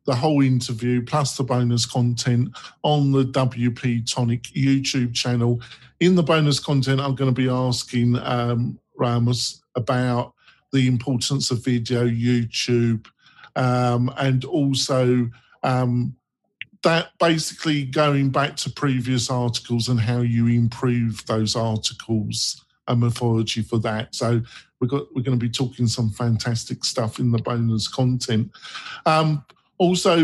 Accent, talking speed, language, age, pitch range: British, 135 wpm, English, 50-69, 120-140 Hz